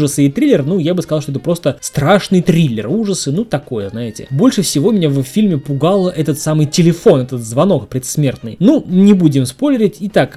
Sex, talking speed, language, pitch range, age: male, 185 wpm, Russian, 145-200 Hz, 20-39